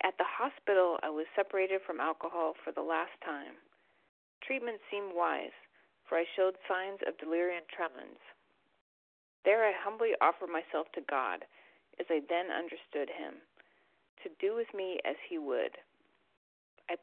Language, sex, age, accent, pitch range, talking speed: English, female, 40-59, American, 160-200 Hz, 150 wpm